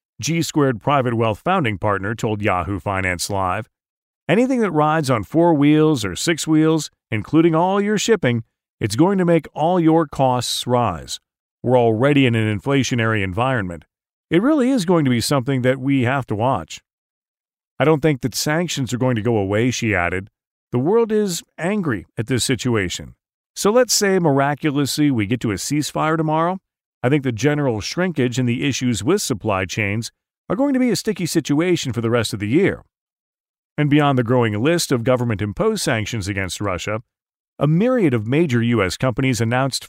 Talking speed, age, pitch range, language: 180 wpm, 40-59, 115-165 Hz, English